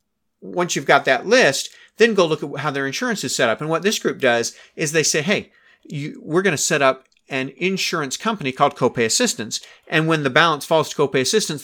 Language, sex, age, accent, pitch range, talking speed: English, male, 40-59, American, 130-165 Hz, 225 wpm